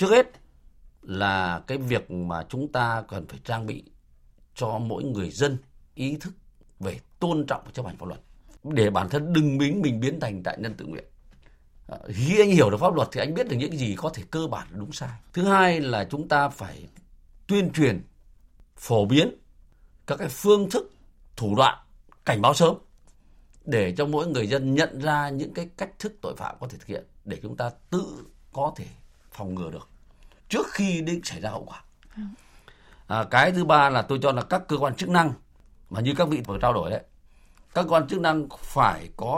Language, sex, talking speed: Vietnamese, male, 205 wpm